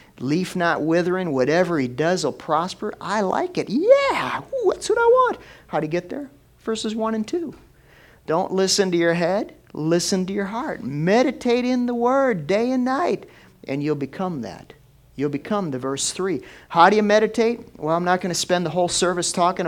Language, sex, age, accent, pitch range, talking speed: English, male, 50-69, American, 155-210 Hz, 195 wpm